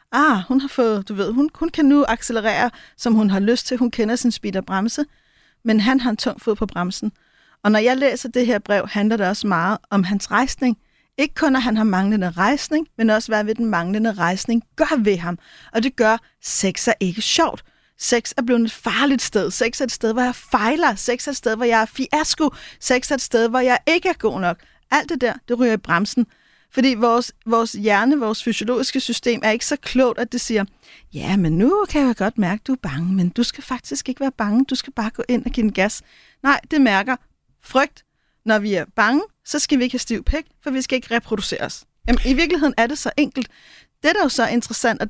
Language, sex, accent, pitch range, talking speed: Danish, female, native, 215-265 Hz, 240 wpm